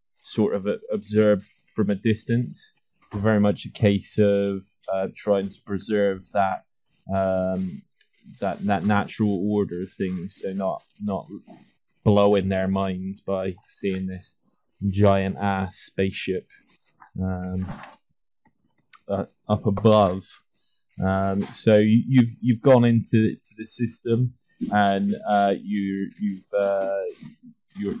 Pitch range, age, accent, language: 95-110 Hz, 20-39, British, English